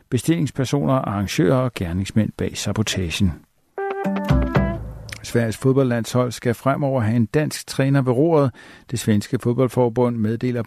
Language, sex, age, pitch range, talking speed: Danish, male, 60-79, 110-140 Hz, 110 wpm